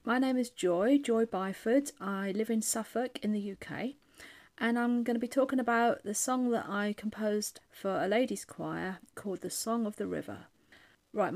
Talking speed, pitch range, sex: 190 wpm, 180-230 Hz, female